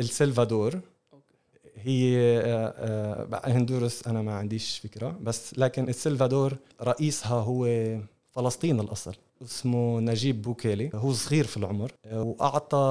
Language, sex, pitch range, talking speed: Arabic, male, 110-135 Hz, 100 wpm